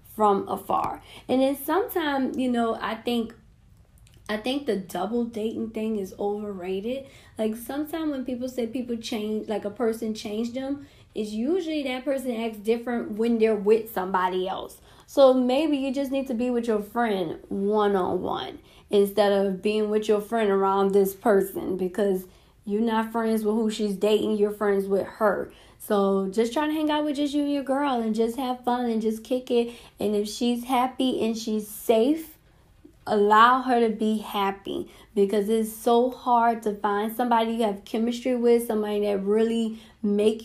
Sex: female